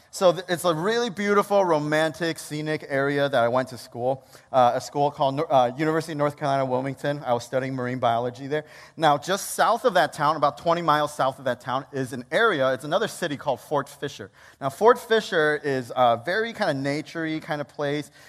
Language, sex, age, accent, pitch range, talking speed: English, male, 30-49, American, 125-155 Hz, 210 wpm